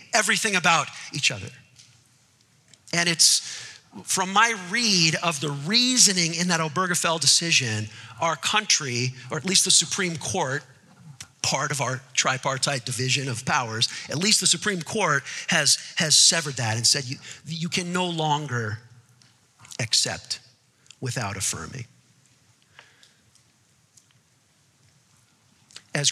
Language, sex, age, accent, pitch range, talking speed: English, male, 50-69, American, 125-160 Hz, 115 wpm